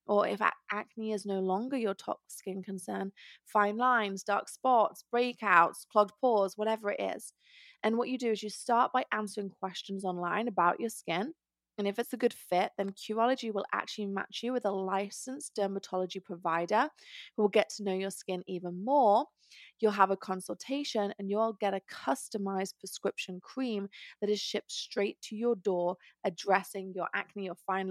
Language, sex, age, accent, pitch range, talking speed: English, female, 20-39, British, 185-215 Hz, 180 wpm